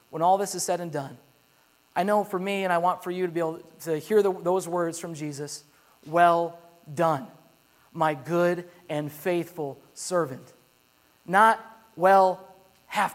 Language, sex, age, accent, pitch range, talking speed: English, male, 30-49, American, 165-210 Hz, 160 wpm